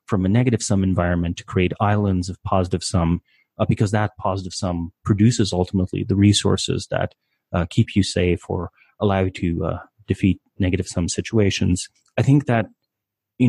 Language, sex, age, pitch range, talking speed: English, male, 30-49, 95-110 Hz, 150 wpm